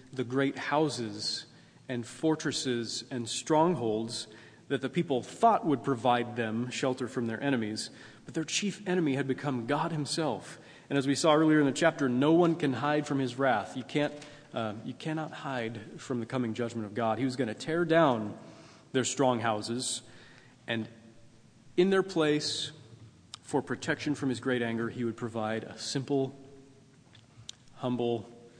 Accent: American